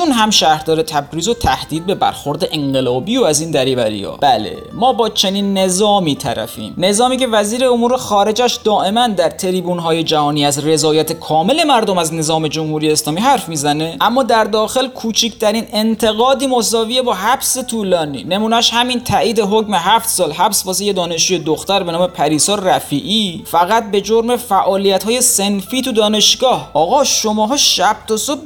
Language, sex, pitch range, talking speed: Persian, male, 180-240 Hz, 160 wpm